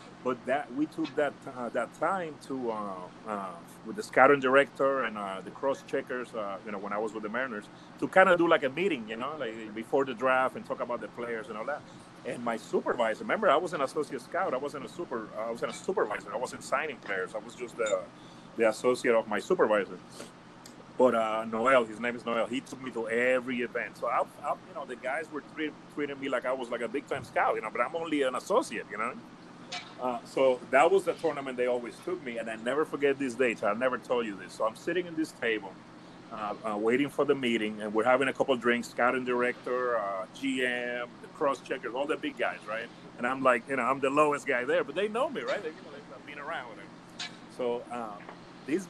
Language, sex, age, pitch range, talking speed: English, male, 30-49, 115-145 Hz, 240 wpm